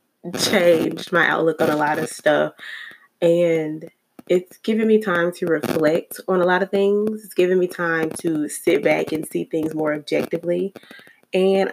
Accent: American